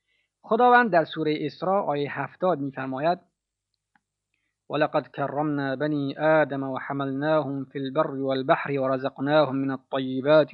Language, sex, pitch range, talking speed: Persian, male, 140-170 Hz, 115 wpm